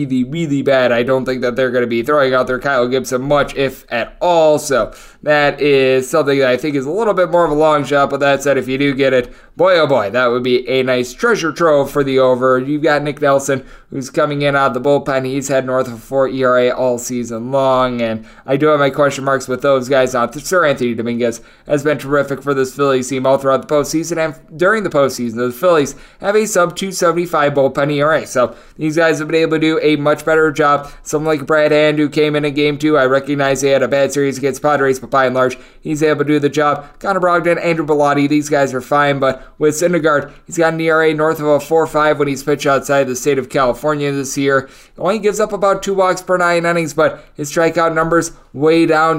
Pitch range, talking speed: 135-155 Hz, 240 wpm